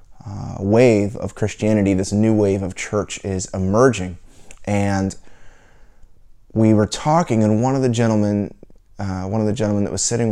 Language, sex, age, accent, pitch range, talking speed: English, male, 20-39, American, 100-130 Hz, 165 wpm